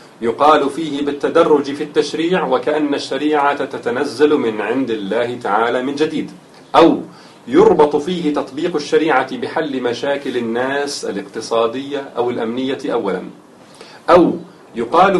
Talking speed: 110 wpm